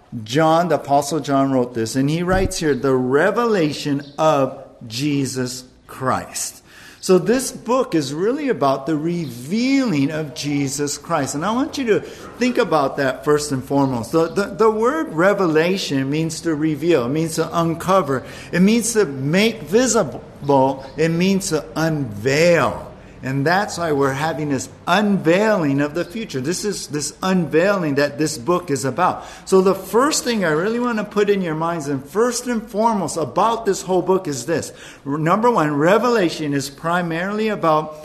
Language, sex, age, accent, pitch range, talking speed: English, male, 50-69, American, 140-195 Hz, 165 wpm